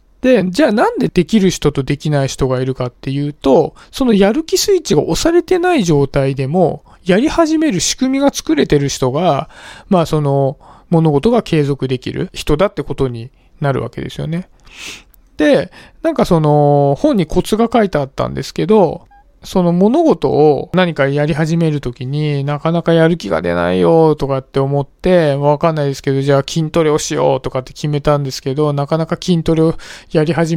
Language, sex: Japanese, male